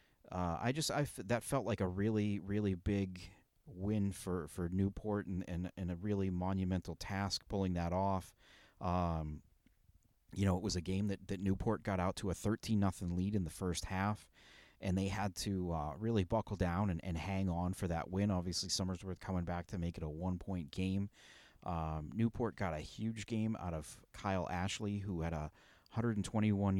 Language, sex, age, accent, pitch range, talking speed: English, male, 40-59, American, 90-105 Hz, 195 wpm